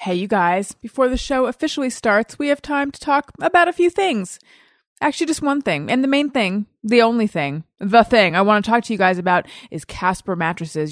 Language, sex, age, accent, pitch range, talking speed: English, female, 30-49, American, 170-220 Hz, 225 wpm